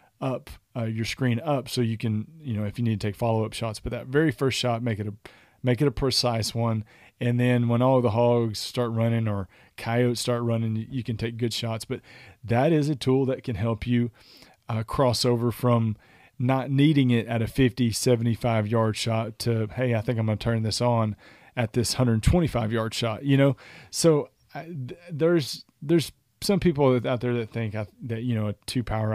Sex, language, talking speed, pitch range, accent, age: male, English, 210 wpm, 110-130 Hz, American, 40-59